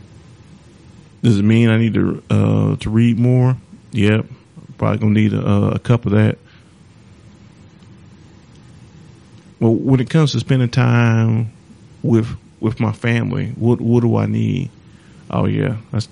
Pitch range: 105-120 Hz